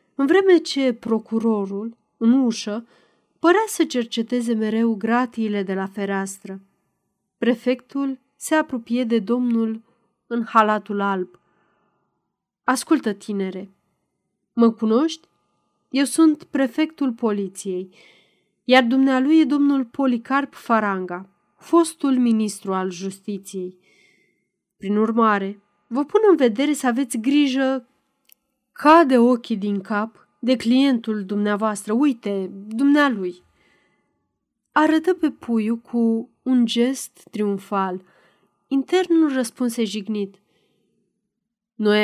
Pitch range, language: 205-270 Hz, Romanian